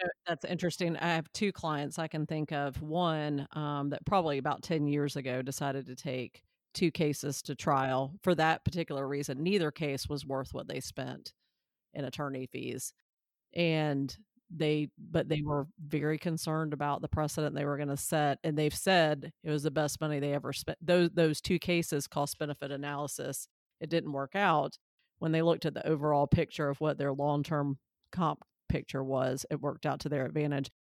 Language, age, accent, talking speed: English, 40-59, American, 190 wpm